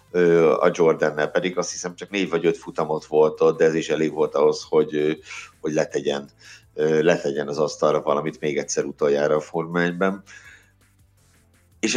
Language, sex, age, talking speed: Hungarian, male, 60-79, 155 wpm